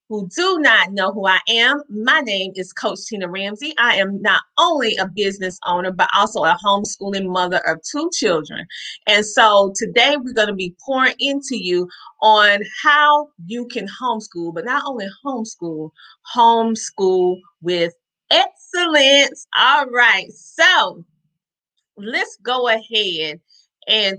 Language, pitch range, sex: English, 185-260 Hz, female